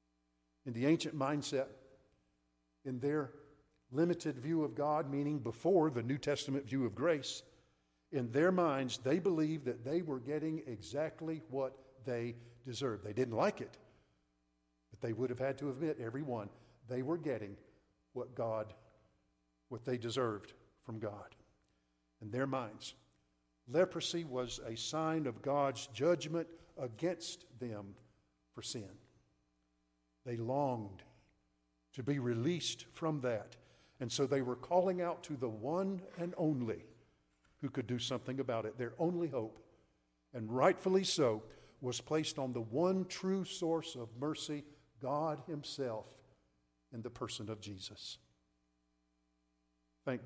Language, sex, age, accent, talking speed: English, male, 50-69, American, 135 wpm